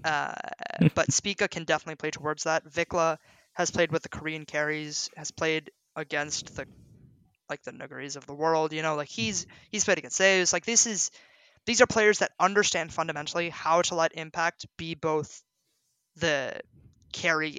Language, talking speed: English, 170 wpm